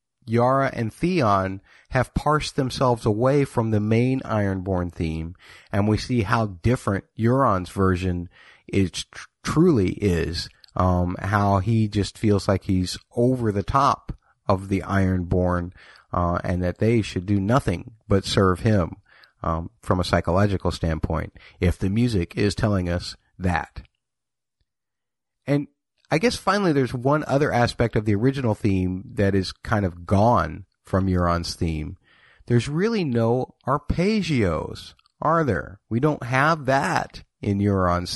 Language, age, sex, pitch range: English, 30-49, male, 95-125 Hz